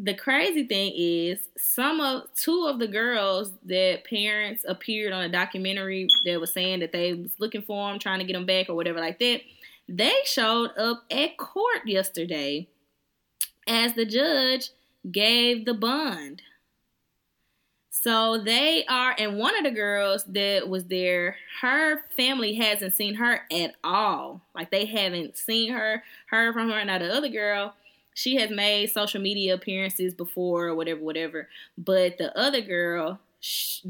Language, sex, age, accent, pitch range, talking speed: English, female, 20-39, American, 175-230 Hz, 160 wpm